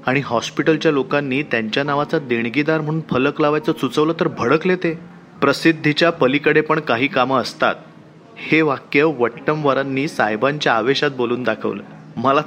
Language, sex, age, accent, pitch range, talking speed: Marathi, male, 30-49, native, 125-160 Hz, 130 wpm